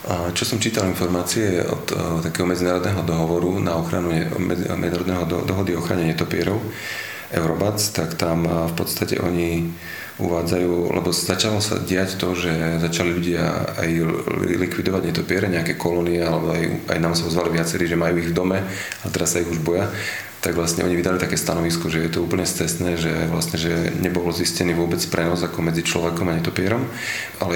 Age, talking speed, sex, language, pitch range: 30-49, 170 wpm, male, Slovak, 85-90 Hz